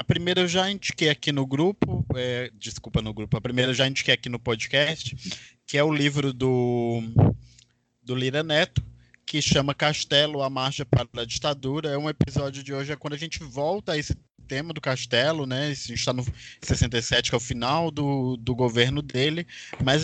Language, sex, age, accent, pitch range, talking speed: Portuguese, male, 20-39, Brazilian, 120-150 Hz, 195 wpm